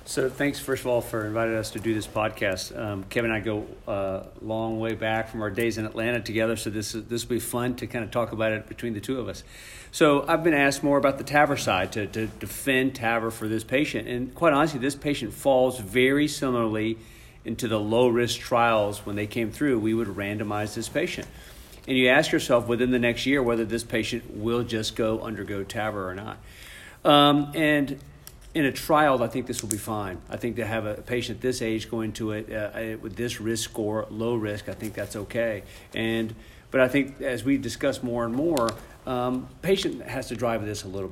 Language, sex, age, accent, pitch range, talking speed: English, male, 50-69, American, 110-130 Hz, 220 wpm